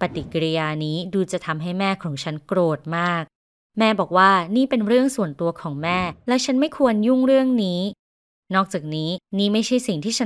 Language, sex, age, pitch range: Thai, female, 20-39, 175-240 Hz